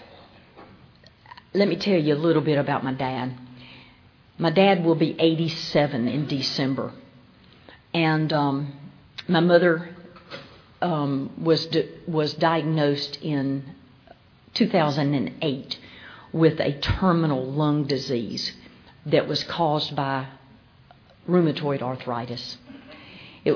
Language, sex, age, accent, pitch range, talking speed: English, female, 50-69, American, 135-160 Hz, 100 wpm